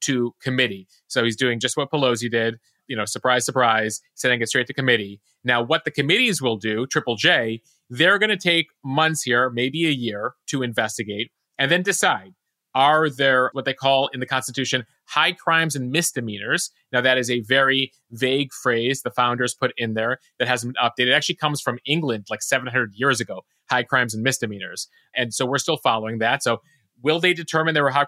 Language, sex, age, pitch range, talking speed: English, male, 30-49, 120-155 Hz, 200 wpm